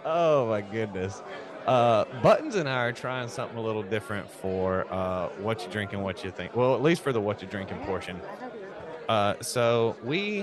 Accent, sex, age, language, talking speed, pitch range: American, male, 30-49, English, 195 wpm, 95-110 Hz